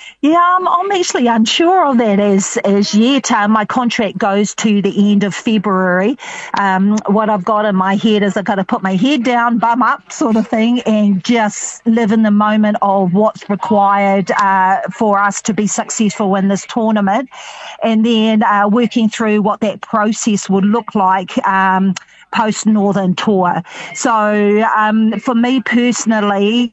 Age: 40-59